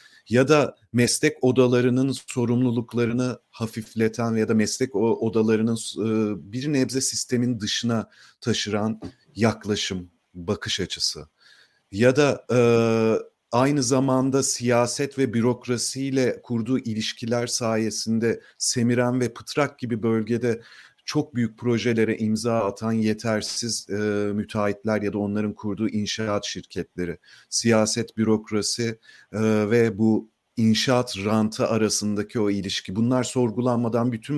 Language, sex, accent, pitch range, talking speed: Turkish, male, native, 105-120 Hz, 105 wpm